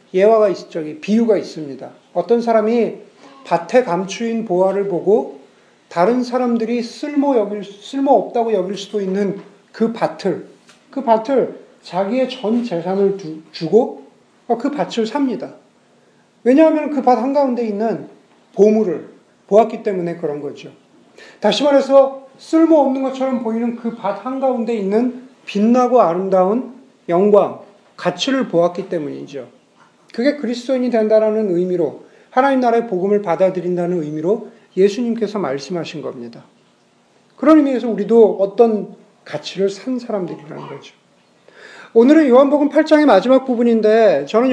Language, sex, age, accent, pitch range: Korean, male, 40-59, native, 195-250 Hz